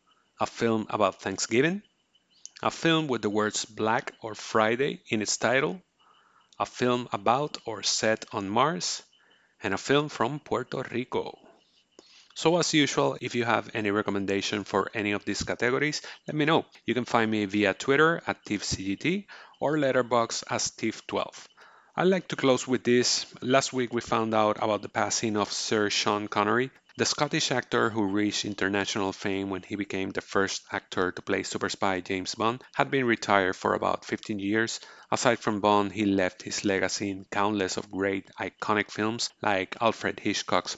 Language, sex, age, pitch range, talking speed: English, male, 30-49, 100-120 Hz, 170 wpm